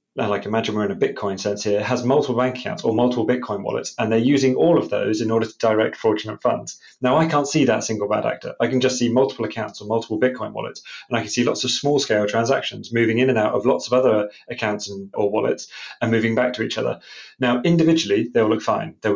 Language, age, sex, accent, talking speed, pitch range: English, 30-49, male, British, 245 wpm, 105-125 Hz